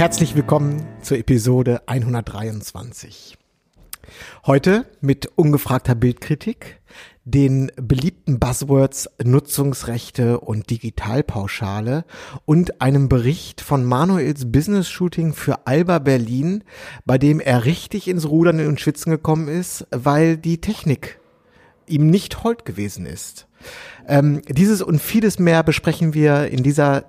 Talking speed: 115 wpm